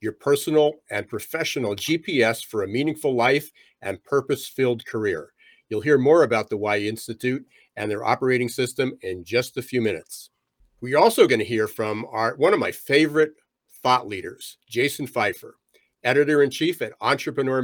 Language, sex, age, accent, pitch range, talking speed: English, male, 50-69, American, 115-160 Hz, 155 wpm